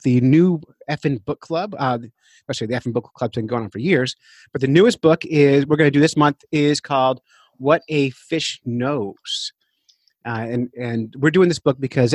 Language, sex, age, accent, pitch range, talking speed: English, male, 30-49, American, 125-150 Hz, 205 wpm